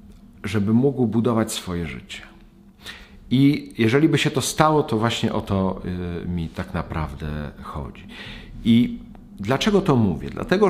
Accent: native